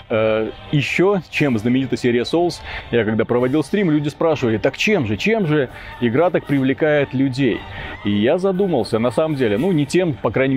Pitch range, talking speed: 115-145 Hz, 175 wpm